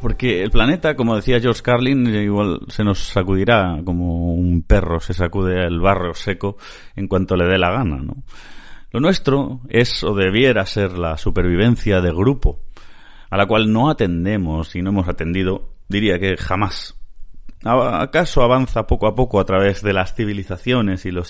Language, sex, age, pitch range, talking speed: Spanish, male, 30-49, 90-120 Hz, 170 wpm